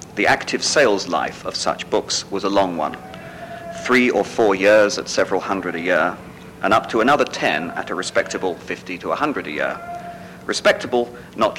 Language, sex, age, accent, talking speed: English, male, 50-69, British, 180 wpm